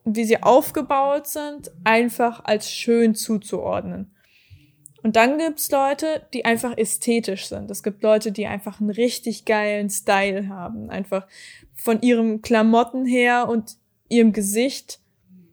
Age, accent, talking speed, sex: 20-39, German, 135 wpm, female